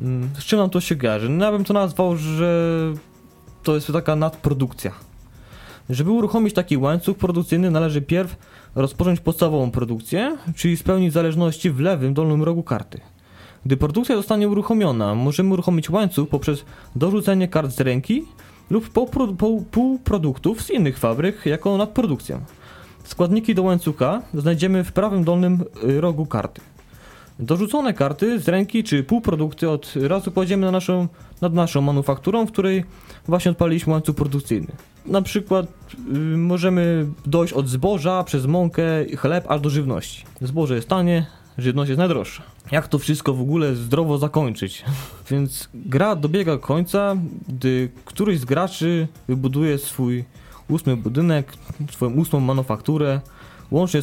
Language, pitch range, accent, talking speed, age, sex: Polish, 135-180 Hz, native, 140 wpm, 20-39, male